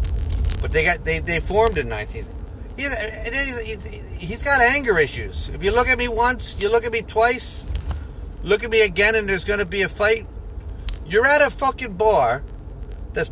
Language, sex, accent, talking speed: English, male, American, 185 wpm